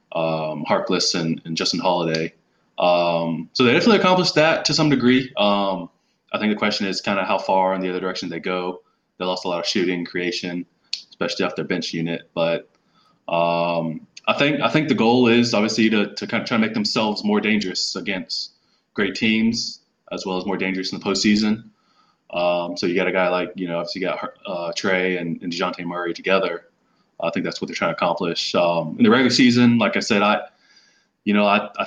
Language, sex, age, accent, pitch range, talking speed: English, male, 20-39, American, 90-110 Hz, 215 wpm